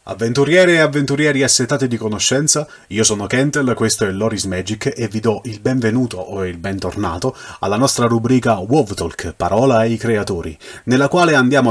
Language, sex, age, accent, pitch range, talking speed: Italian, male, 30-49, native, 95-115 Hz, 165 wpm